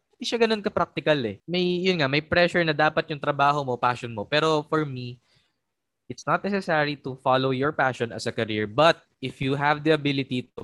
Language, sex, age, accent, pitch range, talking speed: Filipino, male, 20-39, native, 115-155 Hz, 185 wpm